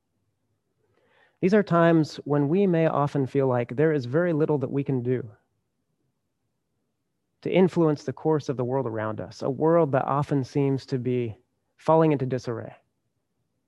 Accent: American